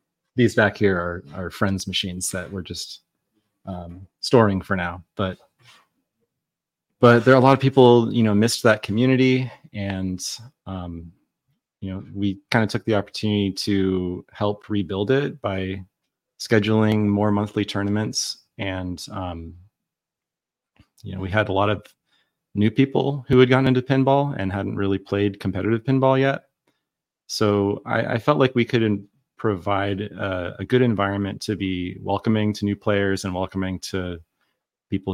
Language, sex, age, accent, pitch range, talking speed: English, male, 30-49, American, 95-115 Hz, 155 wpm